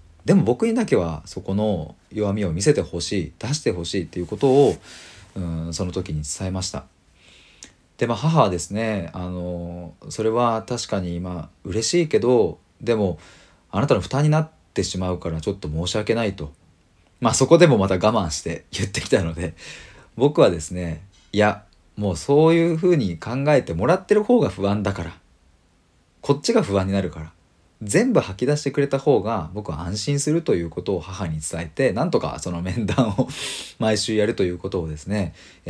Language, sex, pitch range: Japanese, male, 85-110 Hz